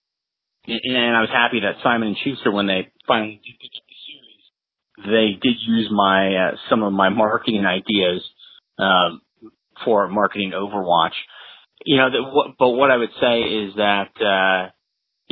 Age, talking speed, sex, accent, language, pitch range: 30-49, 155 wpm, male, American, English, 95-115 Hz